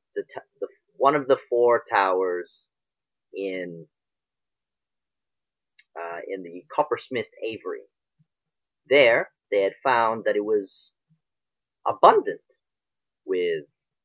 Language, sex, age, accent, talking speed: English, male, 30-49, American, 95 wpm